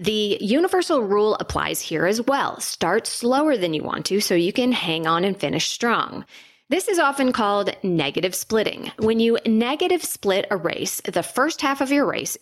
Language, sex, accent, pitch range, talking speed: English, female, American, 190-275 Hz, 190 wpm